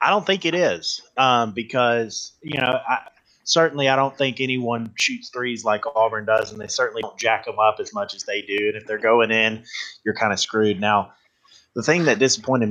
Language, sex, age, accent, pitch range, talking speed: English, male, 20-39, American, 105-120 Hz, 215 wpm